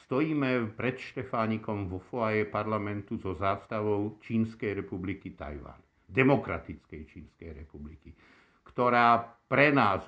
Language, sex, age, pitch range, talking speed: Slovak, male, 60-79, 95-125 Hz, 100 wpm